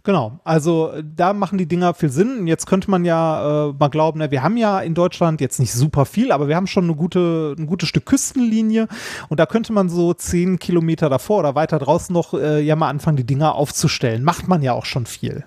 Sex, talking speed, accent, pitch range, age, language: male, 235 wpm, German, 145-190 Hz, 30-49, German